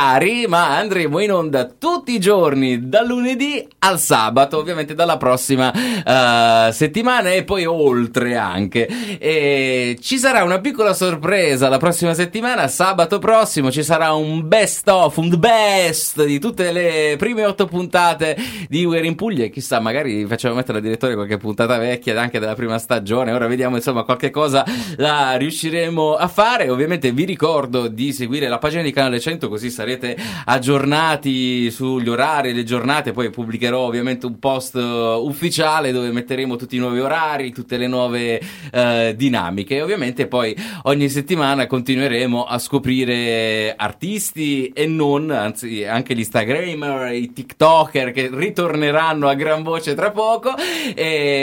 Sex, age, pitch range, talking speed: male, 30-49, 120-170 Hz, 155 wpm